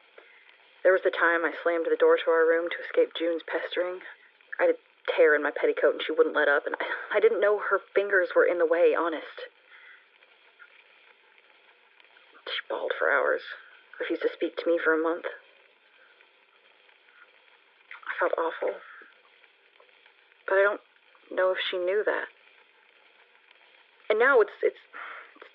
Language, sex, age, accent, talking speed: English, female, 30-49, American, 155 wpm